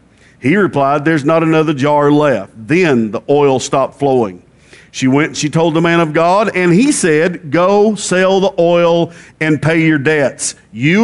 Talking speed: 180 wpm